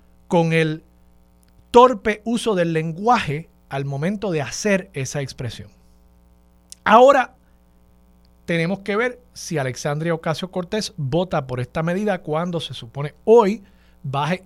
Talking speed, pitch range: 120 wpm, 125-200 Hz